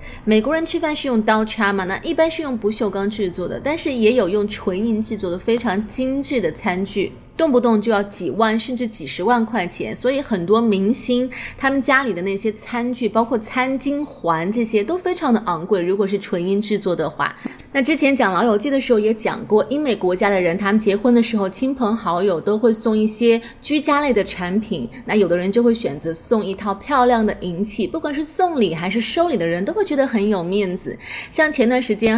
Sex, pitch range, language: female, 200-255 Hz, Chinese